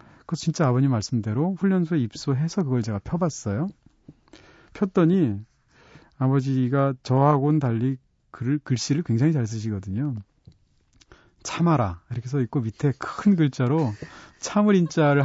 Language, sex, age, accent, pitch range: Korean, male, 40-59, native, 115-150 Hz